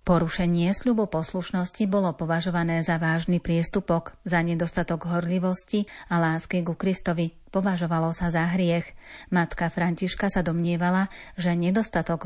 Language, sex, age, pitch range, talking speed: Slovak, female, 40-59, 170-185 Hz, 120 wpm